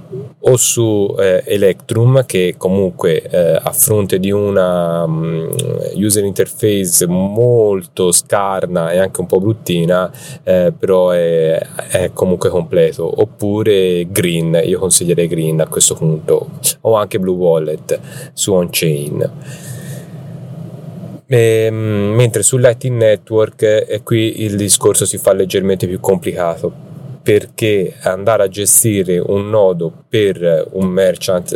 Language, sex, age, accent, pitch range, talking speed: Italian, male, 30-49, native, 90-150 Hz, 120 wpm